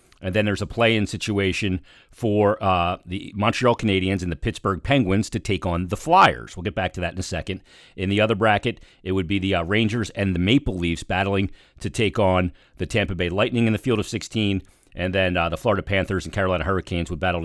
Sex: male